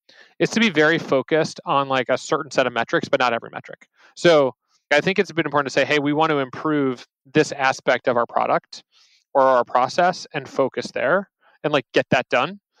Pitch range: 135-170 Hz